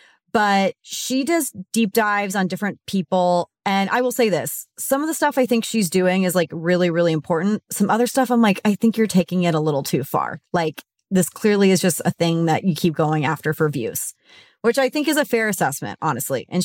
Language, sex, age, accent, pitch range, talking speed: English, female, 30-49, American, 160-220 Hz, 225 wpm